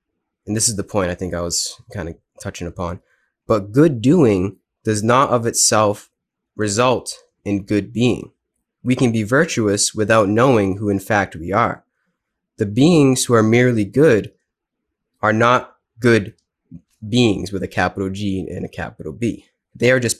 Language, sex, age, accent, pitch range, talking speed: English, male, 20-39, American, 100-125 Hz, 165 wpm